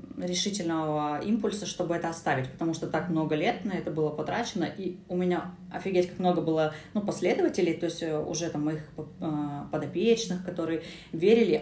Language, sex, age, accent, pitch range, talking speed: Russian, female, 20-39, native, 170-200 Hz, 160 wpm